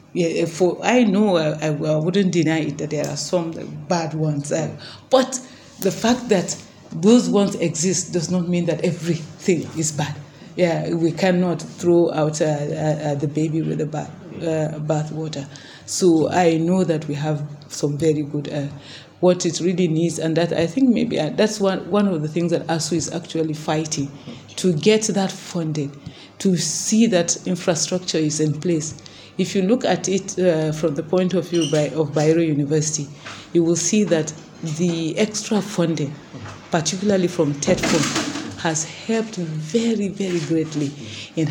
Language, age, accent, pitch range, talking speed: English, 40-59, Nigerian, 155-180 Hz, 170 wpm